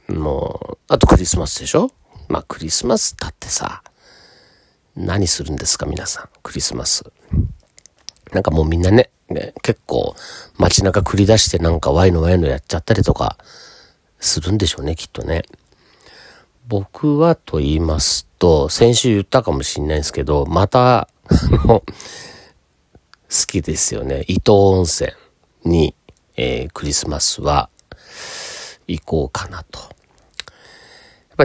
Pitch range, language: 80-125 Hz, Japanese